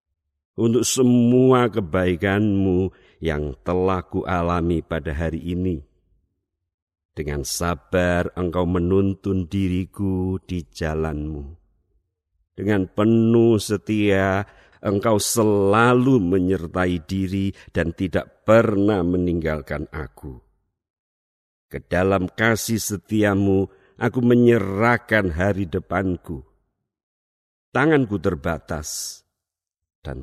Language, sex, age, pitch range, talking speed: Indonesian, male, 50-69, 85-100 Hz, 75 wpm